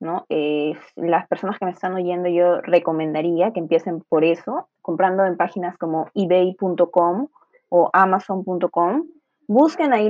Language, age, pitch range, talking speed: Spanish, 20-39, 170-220 Hz, 130 wpm